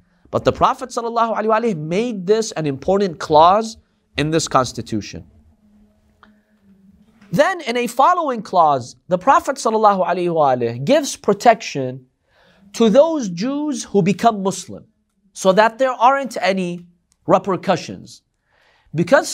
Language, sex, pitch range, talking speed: English, male, 150-225 Hz, 100 wpm